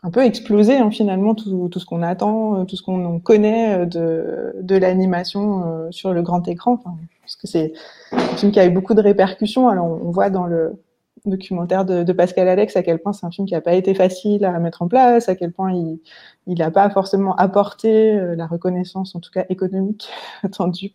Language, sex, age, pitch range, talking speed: French, female, 20-39, 170-200 Hz, 210 wpm